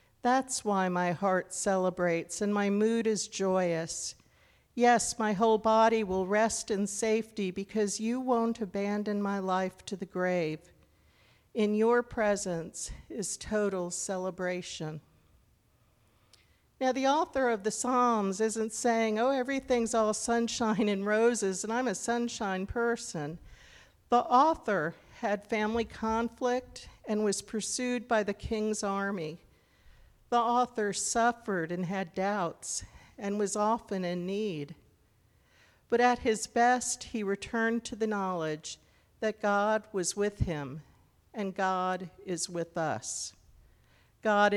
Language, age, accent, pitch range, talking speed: English, 50-69, American, 175-225 Hz, 130 wpm